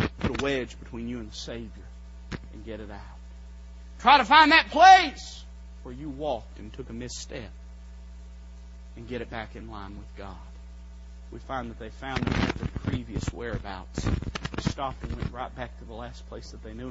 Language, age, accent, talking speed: English, 40-59, American, 195 wpm